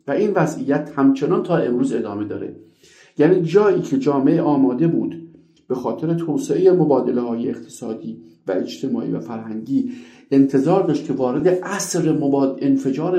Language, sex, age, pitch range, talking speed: Persian, male, 50-69, 130-170 Hz, 140 wpm